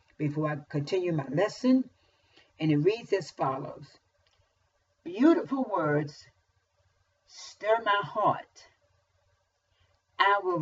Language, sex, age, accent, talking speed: English, female, 50-69, American, 95 wpm